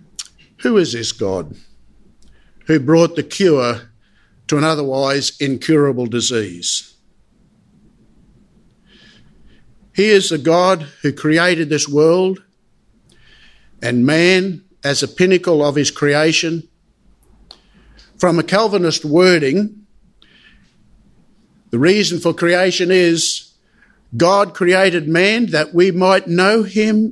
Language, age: English, 60-79